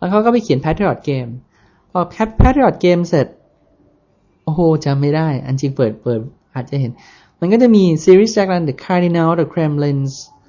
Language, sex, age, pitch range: Thai, male, 20-39, 150-195 Hz